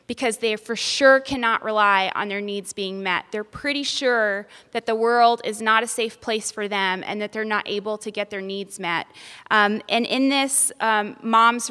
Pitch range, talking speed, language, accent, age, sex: 205-245 Hz, 205 wpm, English, American, 20-39, female